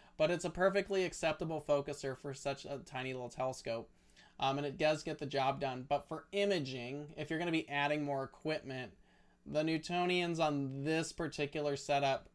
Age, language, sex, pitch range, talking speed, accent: 30-49, English, male, 140-175 Hz, 175 wpm, American